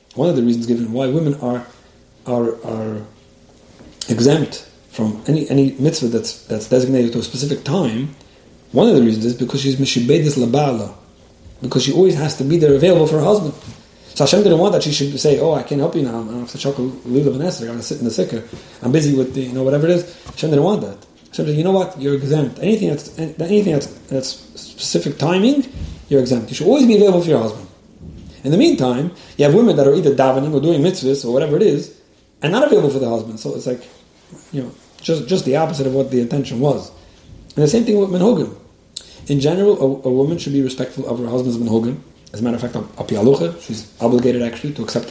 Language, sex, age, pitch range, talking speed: English, male, 30-49, 120-155 Hz, 230 wpm